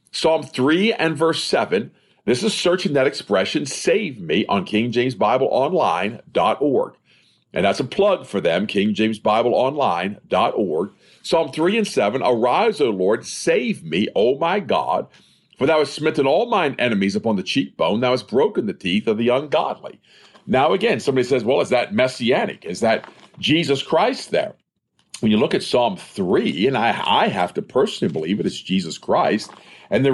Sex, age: male, 50-69